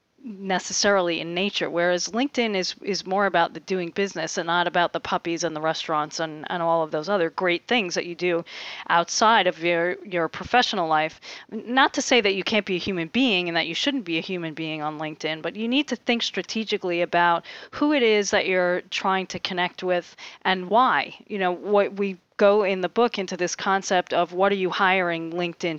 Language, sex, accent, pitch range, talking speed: English, female, American, 170-205 Hz, 215 wpm